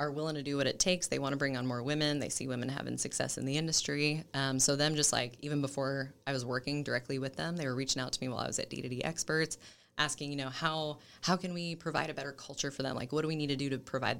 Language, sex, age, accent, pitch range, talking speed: English, female, 20-39, American, 135-150 Hz, 290 wpm